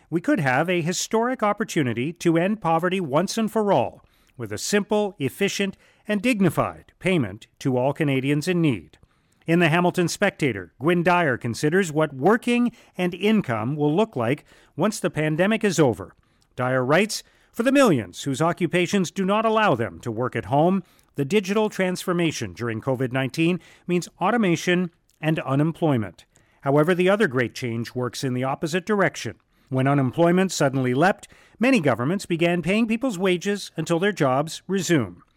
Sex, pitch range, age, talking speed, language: male, 135-185 Hz, 40-59, 155 wpm, English